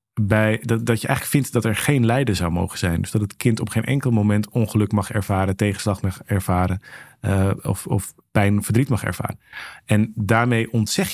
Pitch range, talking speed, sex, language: 100-120 Hz, 195 wpm, male, Dutch